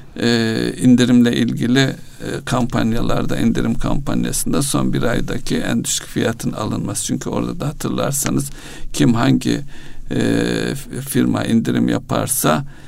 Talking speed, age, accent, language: 105 wpm, 60-79, native, Turkish